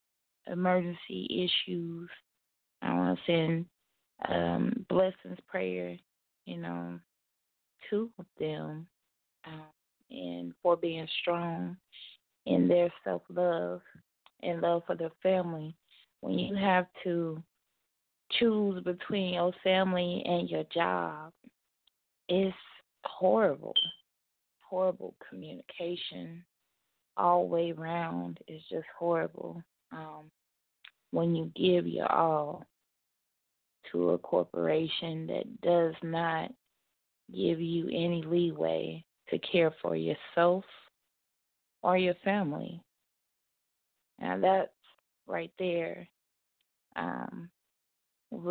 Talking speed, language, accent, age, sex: 95 wpm, English, American, 20-39, female